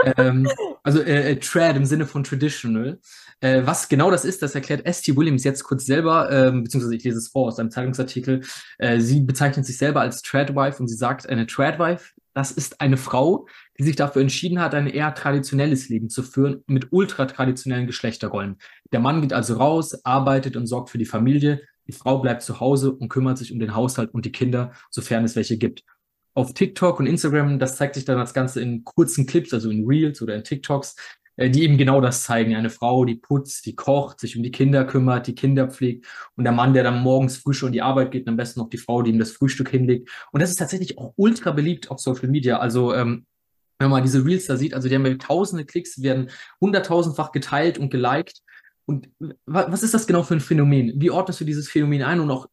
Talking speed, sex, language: 220 wpm, male, German